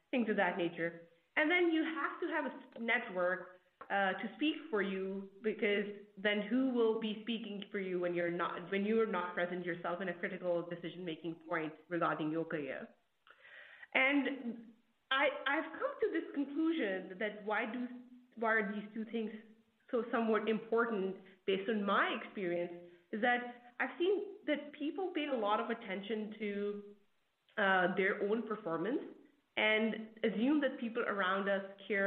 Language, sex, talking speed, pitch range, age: English, female, 165 wpm, 185-240 Hz, 30-49